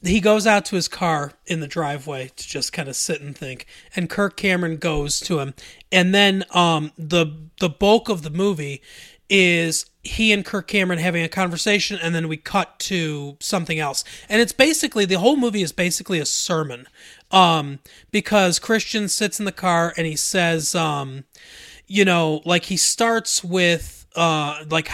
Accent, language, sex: American, English, male